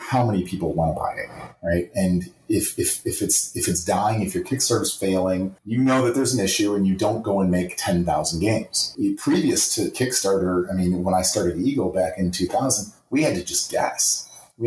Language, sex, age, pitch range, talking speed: English, male, 30-49, 90-120 Hz, 225 wpm